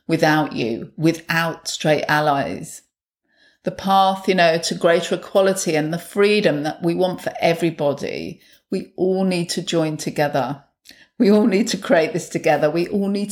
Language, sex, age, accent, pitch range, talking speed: English, female, 40-59, British, 160-205 Hz, 160 wpm